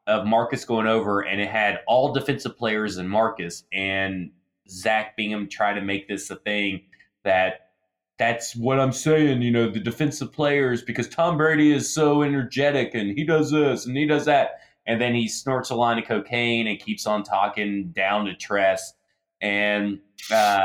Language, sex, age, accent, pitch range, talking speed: English, male, 20-39, American, 100-130 Hz, 180 wpm